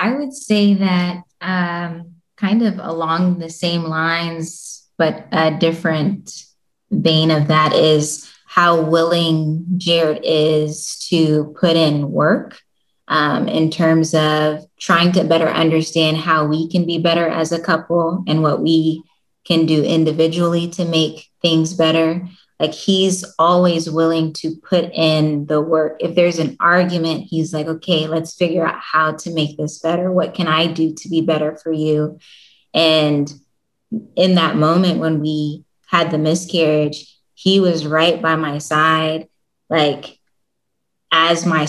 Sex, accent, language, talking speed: female, American, English, 150 wpm